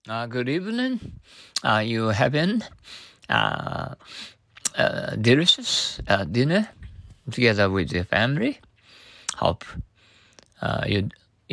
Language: Japanese